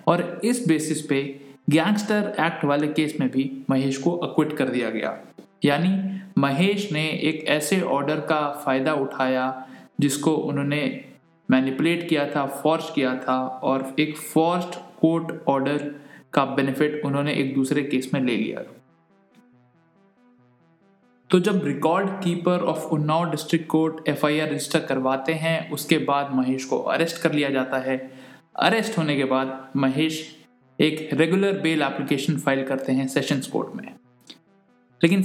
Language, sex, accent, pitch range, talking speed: Hindi, male, native, 135-165 Hz, 145 wpm